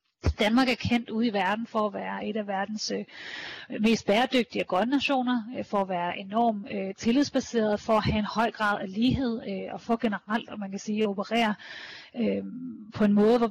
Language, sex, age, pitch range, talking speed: Danish, female, 30-49, 205-235 Hz, 205 wpm